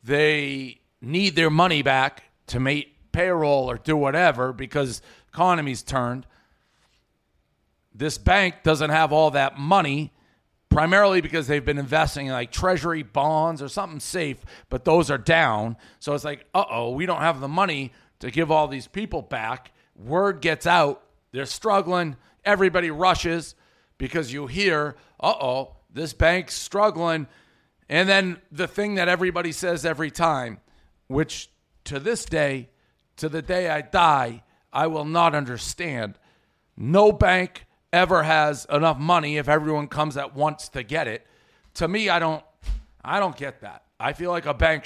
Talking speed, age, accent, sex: 155 wpm, 40-59, American, male